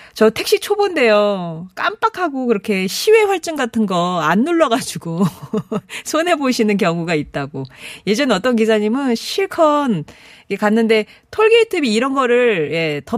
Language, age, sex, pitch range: Korean, 40-59, female, 170-255 Hz